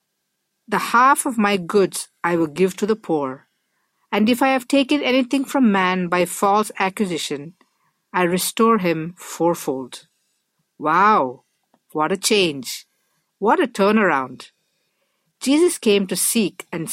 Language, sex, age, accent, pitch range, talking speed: English, female, 50-69, Indian, 170-245 Hz, 135 wpm